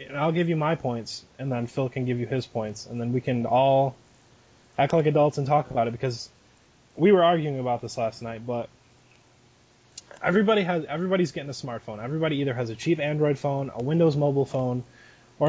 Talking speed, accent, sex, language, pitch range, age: 205 wpm, American, male, English, 135-185 Hz, 20-39